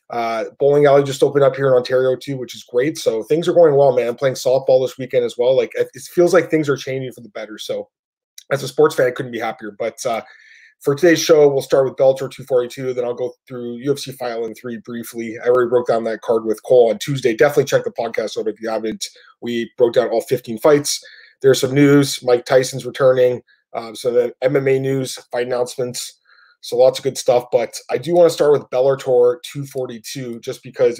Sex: male